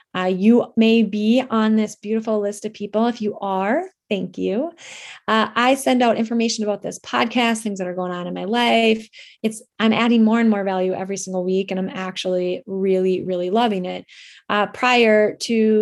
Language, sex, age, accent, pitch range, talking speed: English, female, 20-39, American, 195-235 Hz, 195 wpm